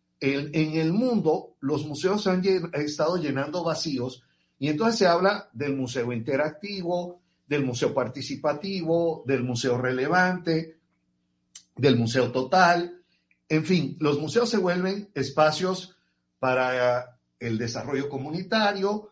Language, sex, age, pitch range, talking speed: Spanish, male, 50-69, 130-185 Hz, 115 wpm